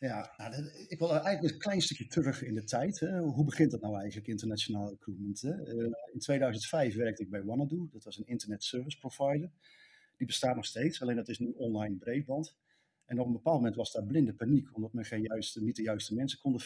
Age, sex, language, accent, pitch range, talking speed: 50-69, male, Dutch, Dutch, 115-145 Hz, 200 wpm